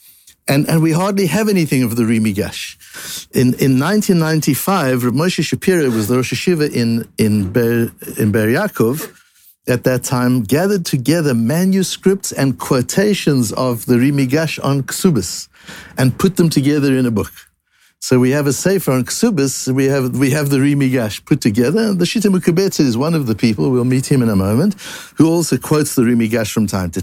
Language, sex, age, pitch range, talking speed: English, male, 60-79, 125-185 Hz, 180 wpm